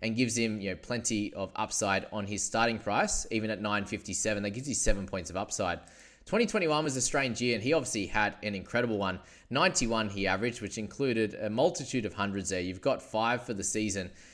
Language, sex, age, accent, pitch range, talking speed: English, male, 20-39, Australian, 100-130 Hz, 210 wpm